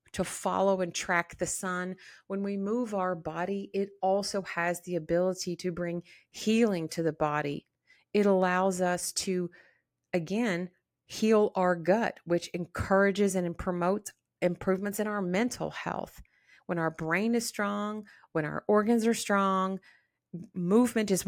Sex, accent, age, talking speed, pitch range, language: female, American, 40-59, 145 wpm, 175-215 Hz, English